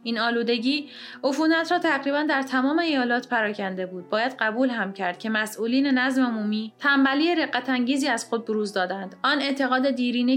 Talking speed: 155 wpm